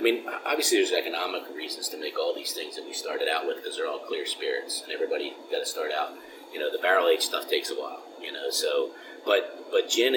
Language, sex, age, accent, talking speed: English, male, 30-49, American, 250 wpm